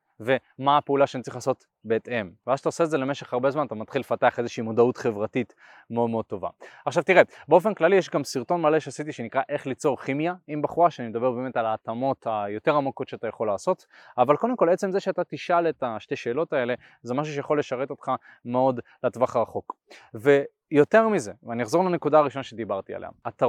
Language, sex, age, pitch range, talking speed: Hebrew, male, 20-39, 125-165 Hz, 195 wpm